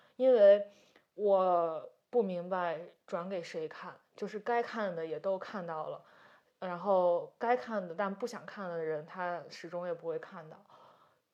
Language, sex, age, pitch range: Chinese, female, 20-39, 175-215 Hz